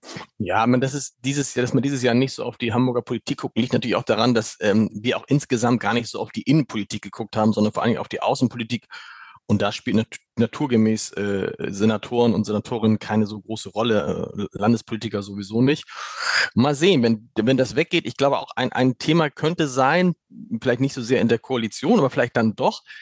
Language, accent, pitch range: German, German, 115-145 Hz